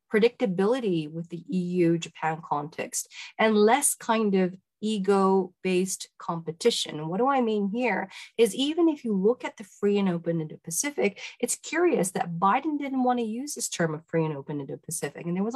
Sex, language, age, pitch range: female, Czech, 40-59, 170-230 Hz